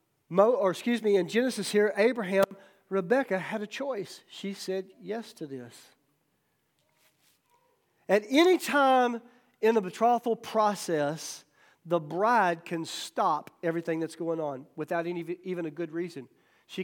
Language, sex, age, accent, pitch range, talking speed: English, male, 50-69, American, 155-220 Hz, 140 wpm